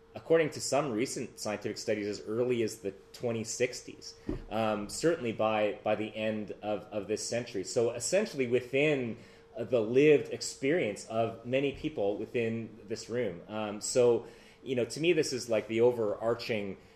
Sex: male